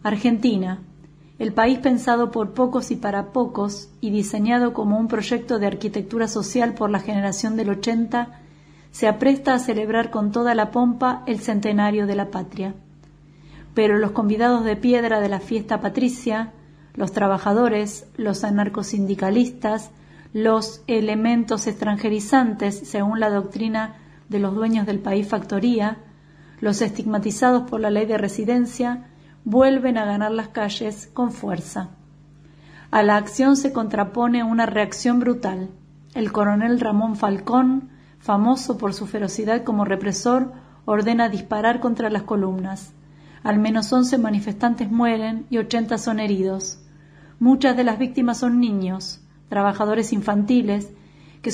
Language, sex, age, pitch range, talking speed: Spanish, female, 40-59, 200-235 Hz, 135 wpm